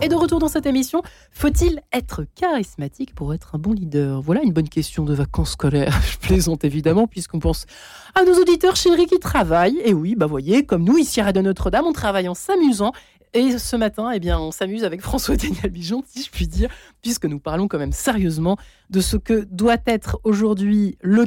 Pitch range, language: 180-230 Hz, French